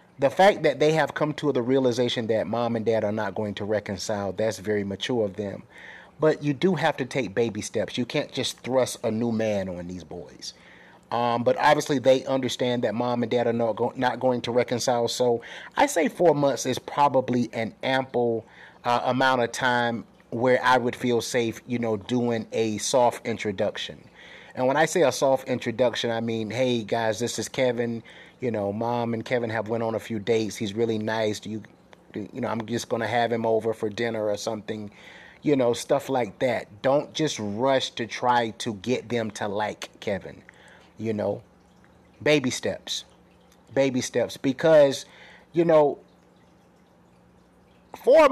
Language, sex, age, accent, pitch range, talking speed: English, male, 30-49, American, 110-135 Hz, 185 wpm